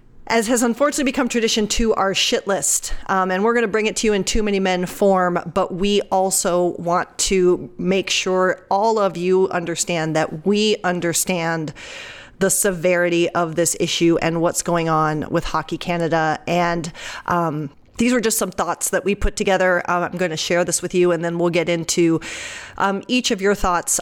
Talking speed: 185 wpm